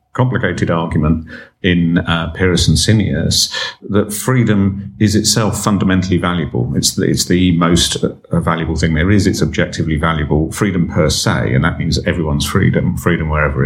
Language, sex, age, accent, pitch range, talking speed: English, male, 50-69, British, 80-105 Hz, 150 wpm